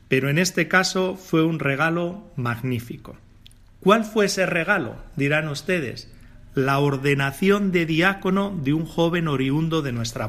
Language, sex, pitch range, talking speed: Spanish, male, 140-185 Hz, 140 wpm